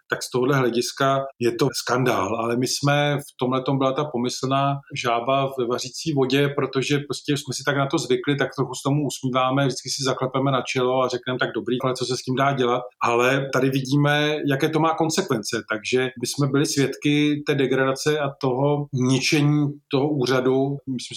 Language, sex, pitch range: Czech, male, 125-145 Hz